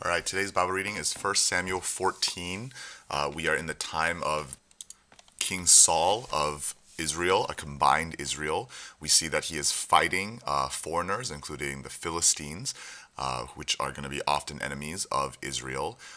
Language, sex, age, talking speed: English, male, 30-49, 165 wpm